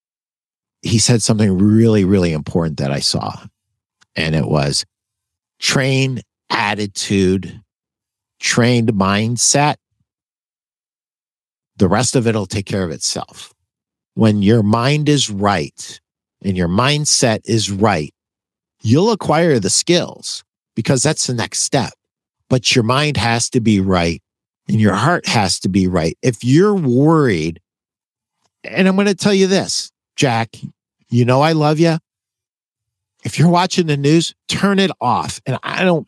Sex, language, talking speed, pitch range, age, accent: male, English, 140 wpm, 105-150 Hz, 50-69, American